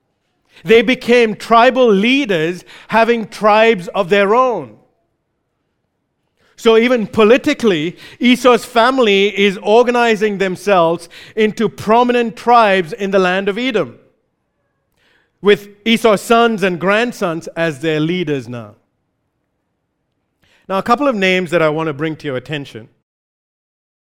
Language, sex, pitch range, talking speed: English, male, 160-225 Hz, 115 wpm